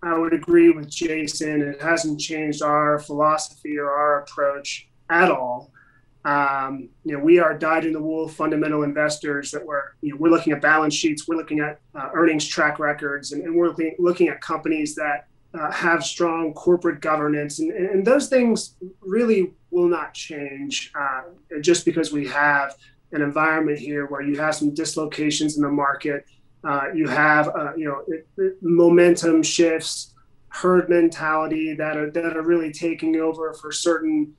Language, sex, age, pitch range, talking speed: English, male, 30-49, 150-175 Hz, 165 wpm